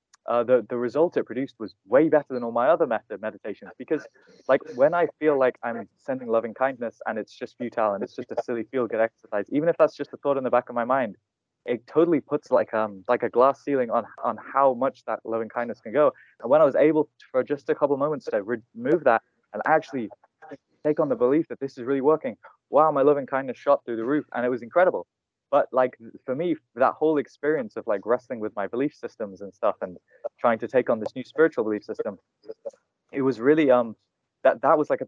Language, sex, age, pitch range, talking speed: English, male, 20-39, 115-150 Hz, 240 wpm